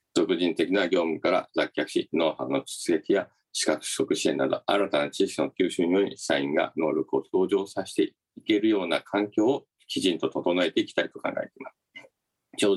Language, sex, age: Japanese, male, 50-69